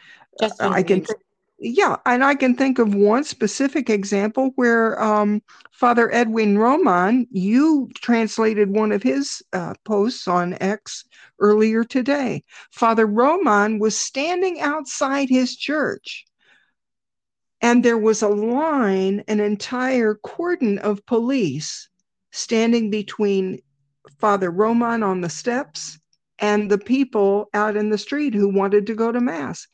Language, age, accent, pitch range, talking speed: English, 50-69, American, 195-245 Hz, 130 wpm